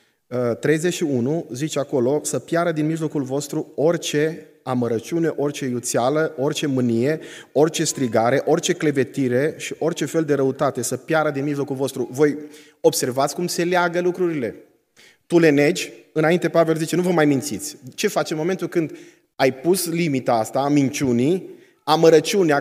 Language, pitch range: Romanian, 135-175 Hz